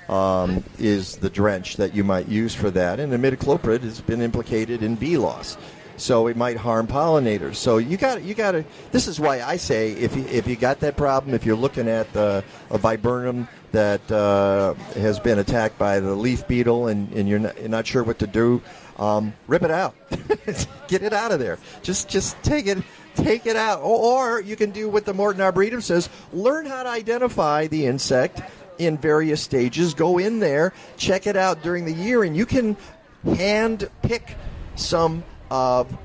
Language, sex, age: English, male, 50-69